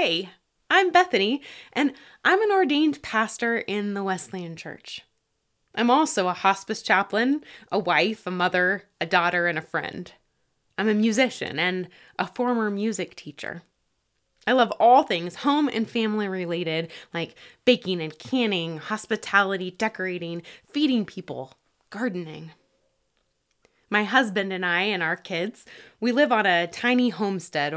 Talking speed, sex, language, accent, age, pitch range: 140 wpm, female, English, American, 20-39, 175-240 Hz